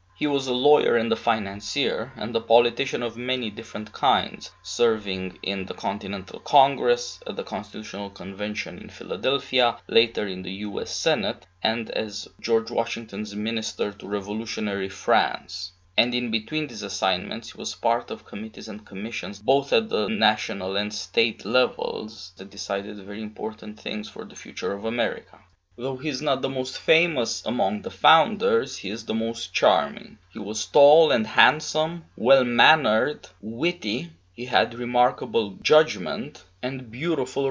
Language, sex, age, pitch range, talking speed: English, male, 20-39, 105-125 Hz, 155 wpm